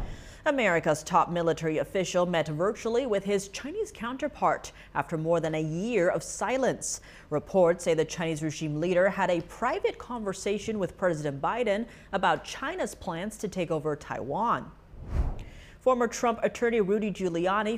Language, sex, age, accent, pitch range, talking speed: English, female, 30-49, American, 160-215 Hz, 140 wpm